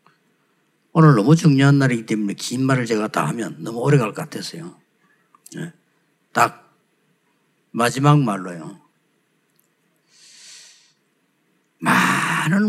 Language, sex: Korean, male